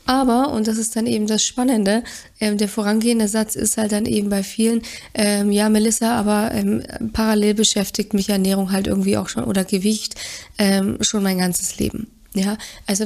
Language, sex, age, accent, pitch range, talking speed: German, female, 20-39, German, 205-235 Hz, 185 wpm